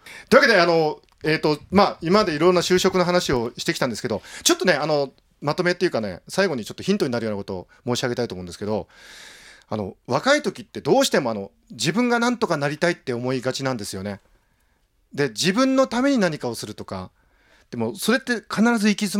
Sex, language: male, Japanese